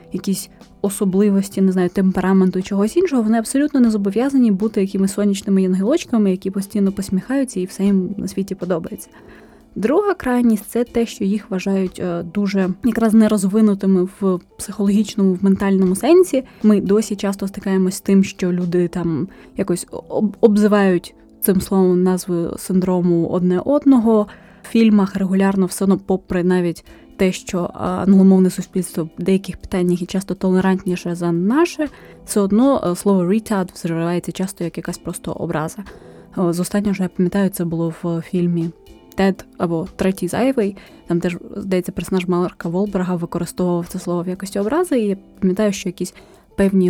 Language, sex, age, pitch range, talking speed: Ukrainian, female, 20-39, 180-205 Hz, 150 wpm